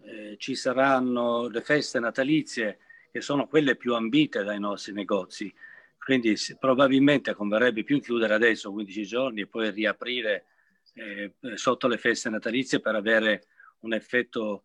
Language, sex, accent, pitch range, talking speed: Italian, male, native, 110-135 Hz, 140 wpm